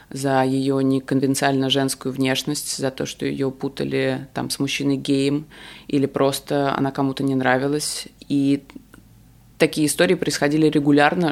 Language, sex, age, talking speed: Russian, female, 20-39, 135 wpm